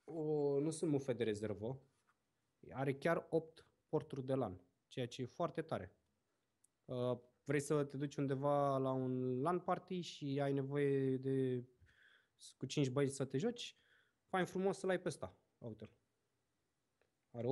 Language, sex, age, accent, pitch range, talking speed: Romanian, male, 20-39, native, 110-145 Hz, 145 wpm